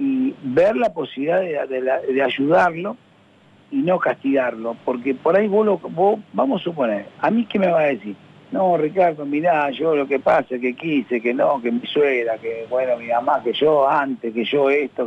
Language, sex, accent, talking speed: Spanish, male, Argentinian, 200 wpm